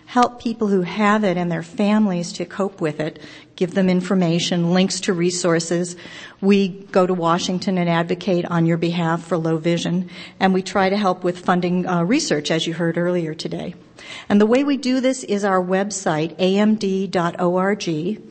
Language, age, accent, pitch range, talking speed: English, 50-69, American, 170-200 Hz, 175 wpm